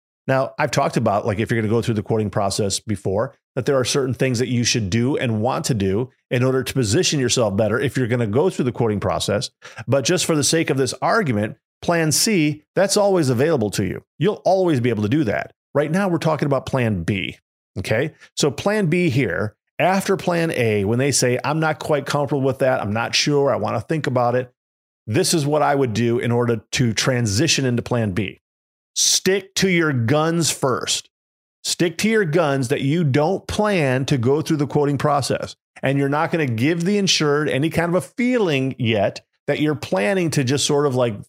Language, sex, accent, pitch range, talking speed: English, male, American, 115-150 Hz, 220 wpm